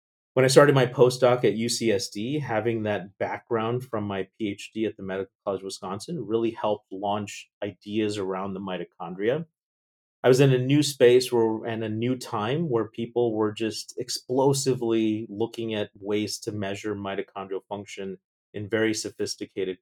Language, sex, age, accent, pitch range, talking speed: English, male, 30-49, American, 100-120 Hz, 155 wpm